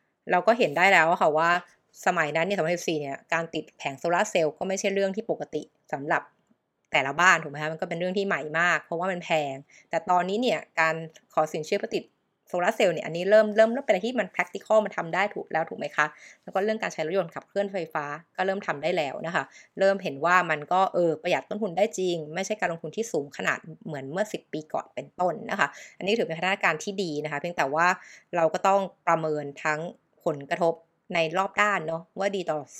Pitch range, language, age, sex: 160-195 Hz, Thai, 20-39, female